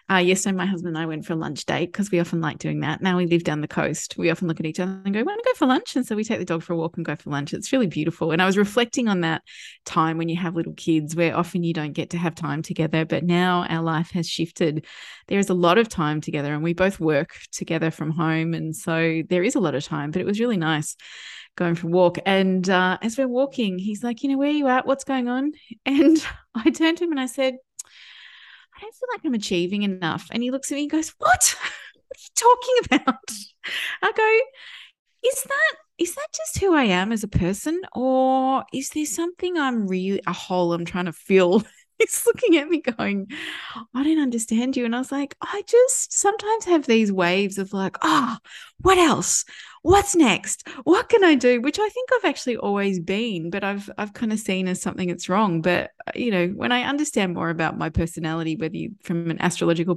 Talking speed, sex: 240 wpm, female